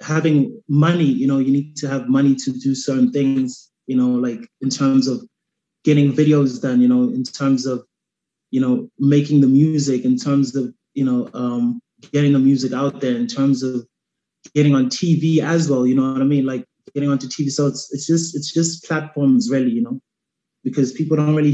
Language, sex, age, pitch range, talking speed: English, male, 20-39, 130-195 Hz, 205 wpm